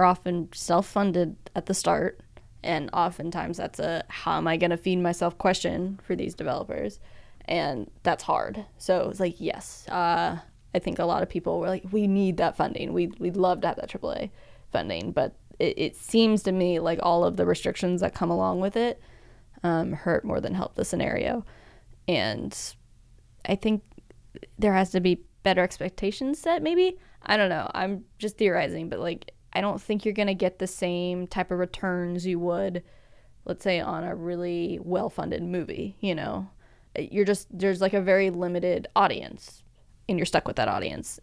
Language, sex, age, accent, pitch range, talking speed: English, female, 10-29, American, 175-210 Hz, 185 wpm